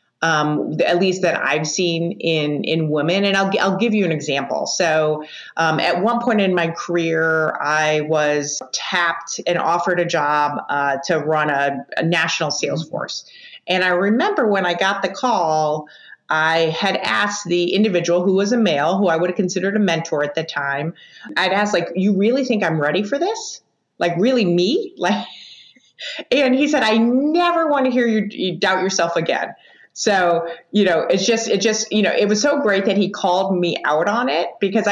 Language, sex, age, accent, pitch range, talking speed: English, female, 30-49, American, 160-215 Hz, 195 wpm